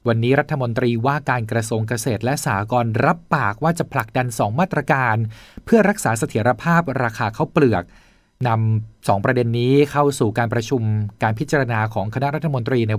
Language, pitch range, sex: Thai, 110-140 Hz, male